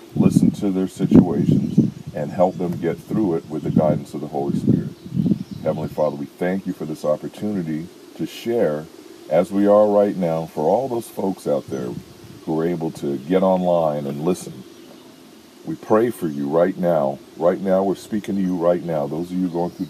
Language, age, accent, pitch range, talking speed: English, 50-69, American, 80-100 Hz, 195 wpm